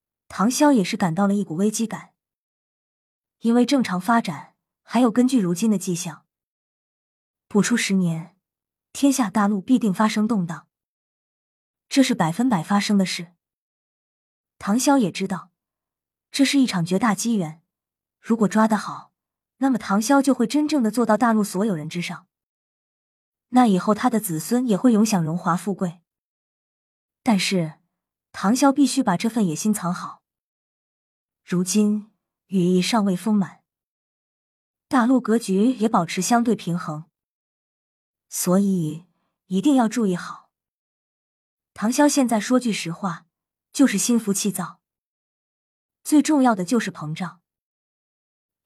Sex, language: female, Chinese